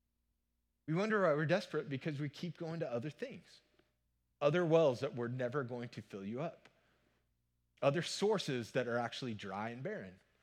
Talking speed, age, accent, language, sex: 175 wpm, 30-49, American, English, male